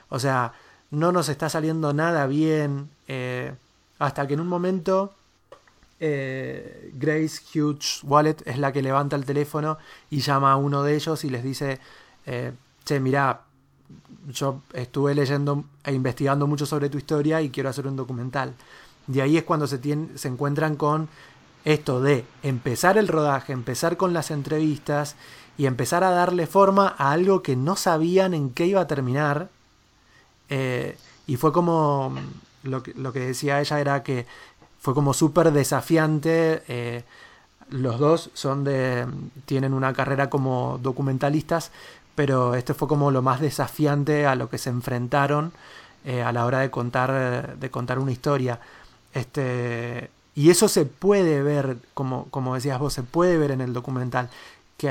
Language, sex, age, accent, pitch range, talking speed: Spanish, male, 20-39, Argentinian, 130-155 Hz, 160 wpm